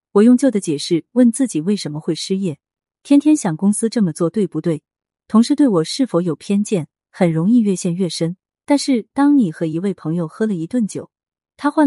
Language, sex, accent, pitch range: Chinese, female, native, 160-235 Hz